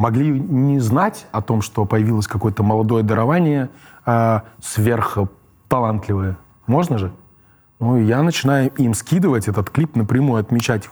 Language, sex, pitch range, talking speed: Russian, male, 110-130 Hz, 125 wpm